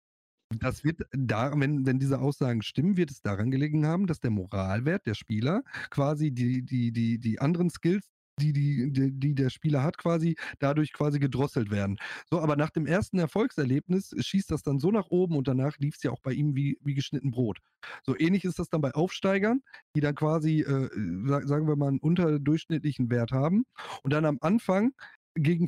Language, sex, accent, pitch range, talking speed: German, male, German, 135-175 Hz, 195 wpm